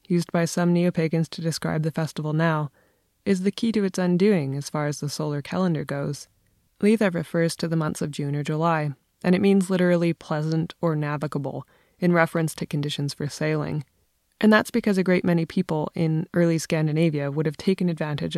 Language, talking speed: English, 190 wpm